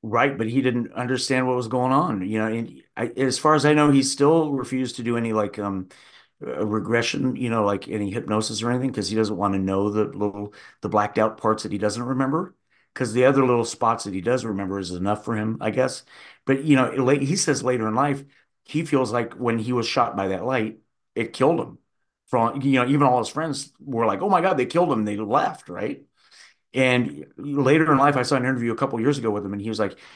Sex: male